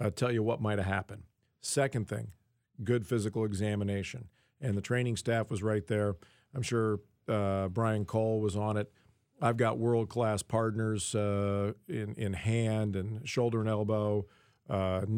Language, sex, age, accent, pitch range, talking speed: English, male, 50-69, American, 105-120 Hz, 155 wpm